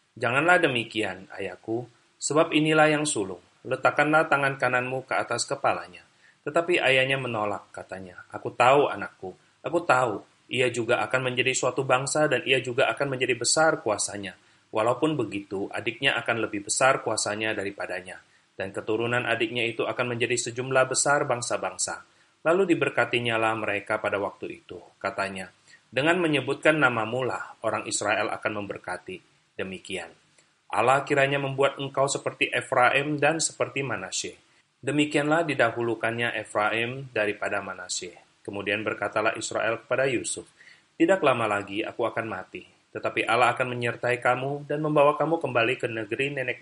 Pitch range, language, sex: 110-140 Hz, Indonesian, male